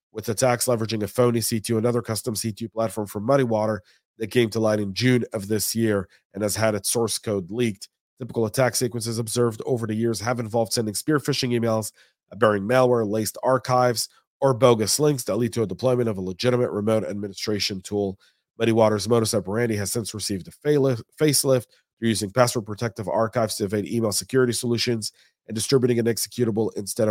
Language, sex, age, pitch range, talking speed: English, male, 40-59, 100-120 Hz, 185 wpm